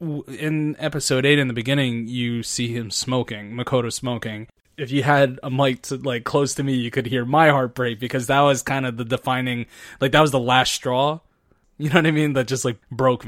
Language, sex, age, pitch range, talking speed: English, male, 20-39, 125-145 Hz, 225 wpm